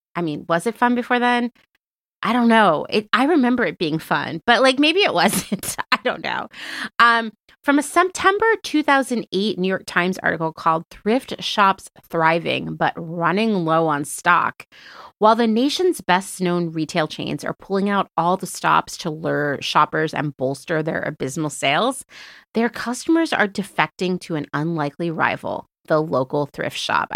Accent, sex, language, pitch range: American, female, English, 165-245 Hz